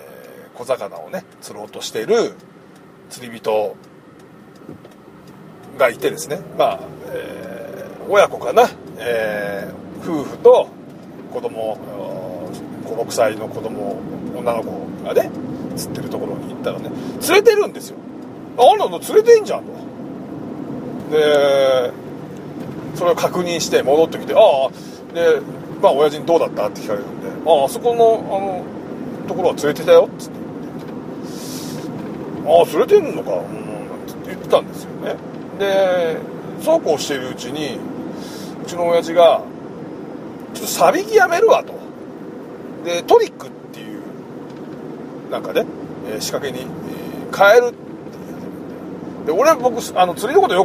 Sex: male